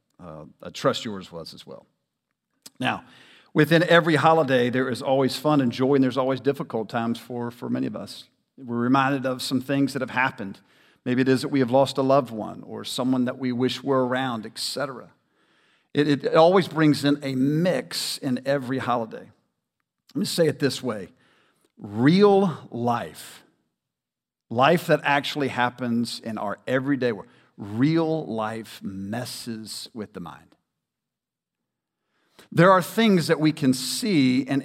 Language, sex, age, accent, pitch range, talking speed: English, male, 50-69, American, 130-160 Hz, 165 wpm